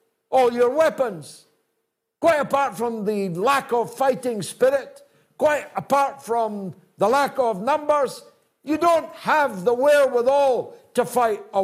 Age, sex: 60-79, male